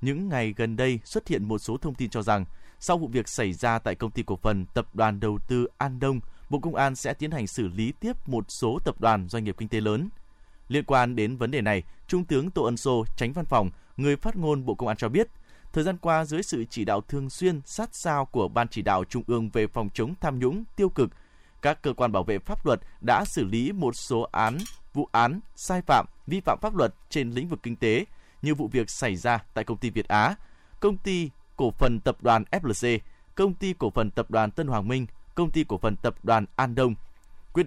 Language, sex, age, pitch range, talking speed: Vietnamese, male, 20-39, 110-150 Hz, 245 wpm